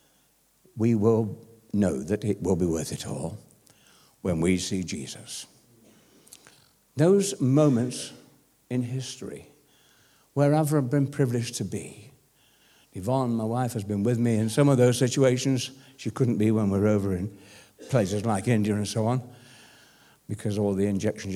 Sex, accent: male, British